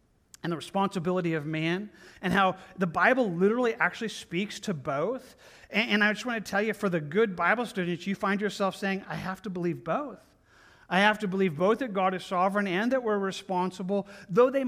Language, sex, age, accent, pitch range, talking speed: English, male, 40-59, American, 165-205 Hz, 210 wpm